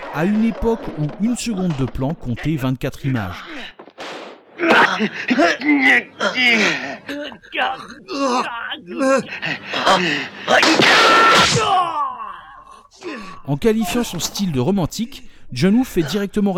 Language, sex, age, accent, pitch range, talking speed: French, male, 50-69, French, 135-200 Hz, 75 wpm